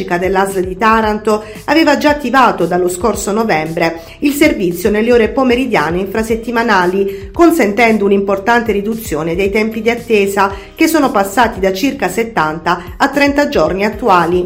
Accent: native